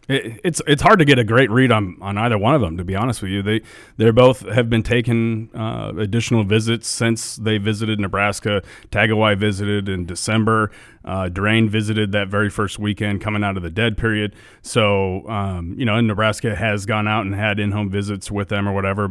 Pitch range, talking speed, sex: 100-115 Hz, 215 wpm, male